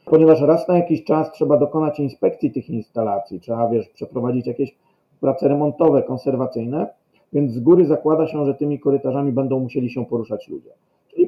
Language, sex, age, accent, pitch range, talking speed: Polish, male, 40-59, native, 120-150 Hz, 165 wpm